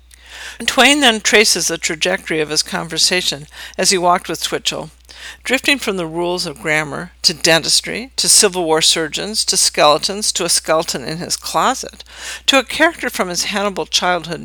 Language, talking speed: English, 165 wpm